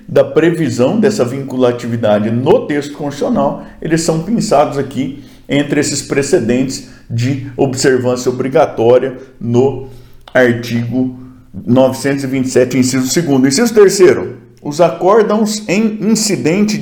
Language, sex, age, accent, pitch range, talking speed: Portuguese, male, 50-69, Brazilian, 130-180 Hz, 105 wpm